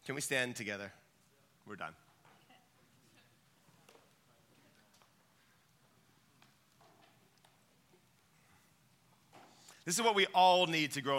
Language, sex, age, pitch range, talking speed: English, male, 30-49, 145-195 Hz, 75 wpm